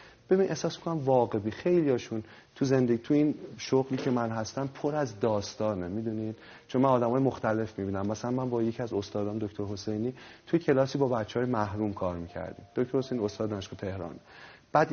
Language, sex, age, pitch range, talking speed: Persian, male, 30-49, 105-135 Hz, 180 wpm